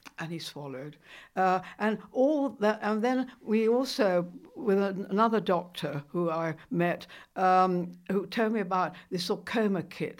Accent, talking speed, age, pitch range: British, 155 wpm, 60-79, 175-225 Hz